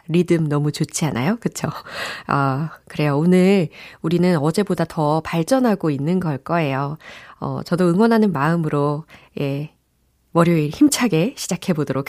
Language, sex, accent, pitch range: Korean, female, native, 150-200 Hz